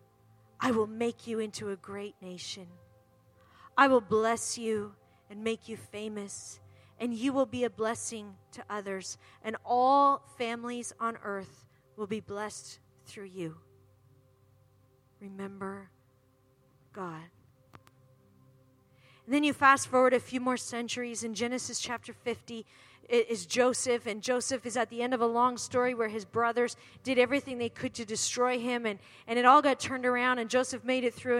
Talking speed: 160 wpm